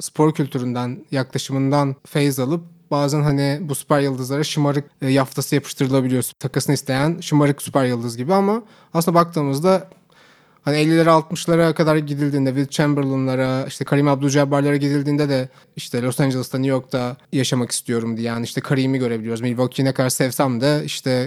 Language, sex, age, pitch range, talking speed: Turkish, male, 30-49, 130-155 Hz, 150 wpm